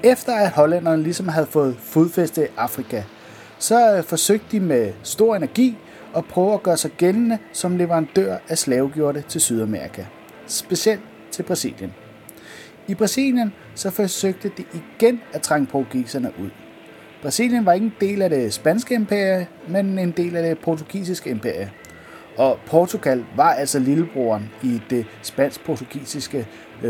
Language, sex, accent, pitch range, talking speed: Danish, male, native, 130-210 Hz, 140 wpm